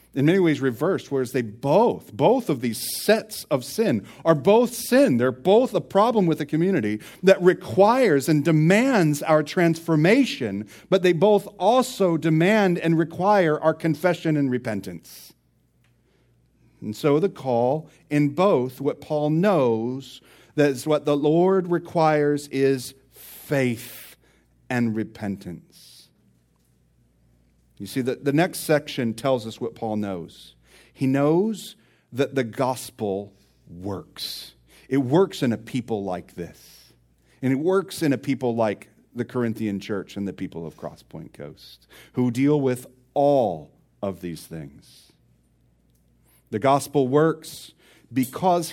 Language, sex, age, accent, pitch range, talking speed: English, male, 40-59, American, 105-160 Hz, 135 wpm